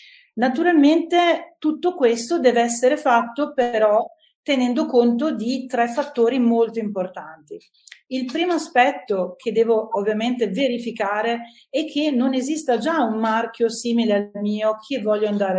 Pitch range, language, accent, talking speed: 215-260 Hz, Italian, native, 130 wpm